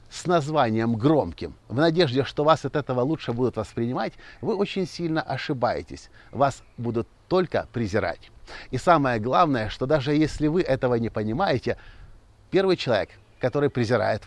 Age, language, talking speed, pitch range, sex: 50-69, Russian, 145 wpm, 110-155 Hz, male